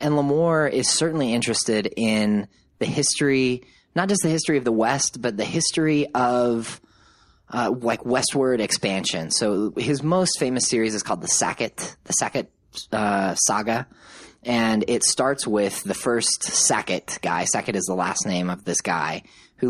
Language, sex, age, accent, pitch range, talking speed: English, male, 20-39, American, 100-125 Hz, 160 wpm